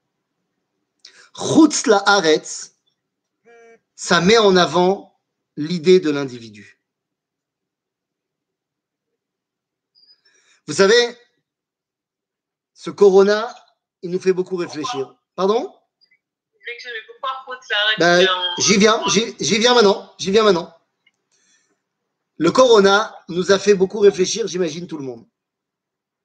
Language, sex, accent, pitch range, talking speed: French, male, French, 180-230 Hz, 85 wpm